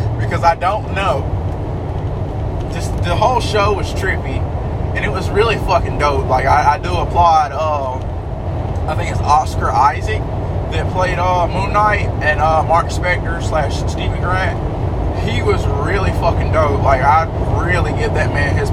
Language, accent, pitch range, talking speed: English, American, 90-110 Hz, 160 wpm